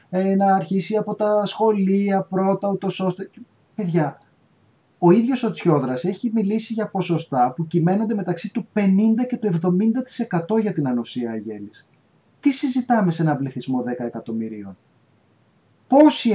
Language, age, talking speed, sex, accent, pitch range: Greek, 30-49, 135 wpm, male, native, 135-205 Hz